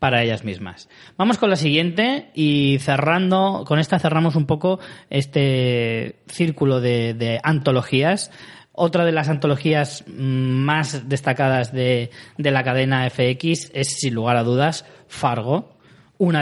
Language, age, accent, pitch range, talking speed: Spanish, 20-39, Spanish, 130-160 Hz, 135 wpm